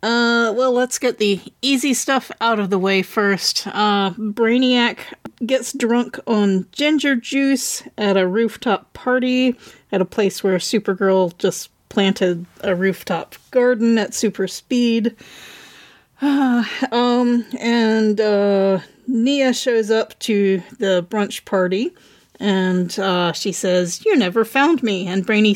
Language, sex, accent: English, female, American